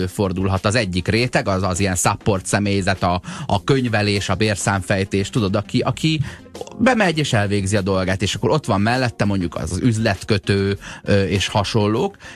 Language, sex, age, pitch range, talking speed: Hungarian, male, 30-49, 95-115 Hz, 155 wpm